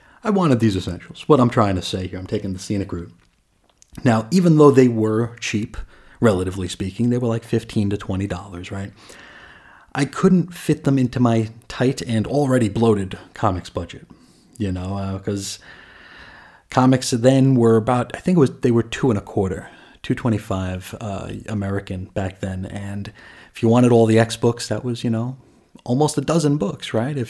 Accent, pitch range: American, 100-125 Hz